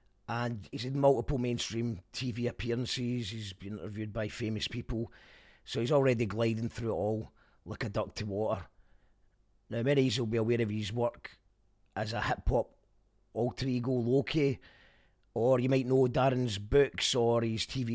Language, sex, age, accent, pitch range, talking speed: English, male, 30-49, British, 105-135 Hz, 165 wpm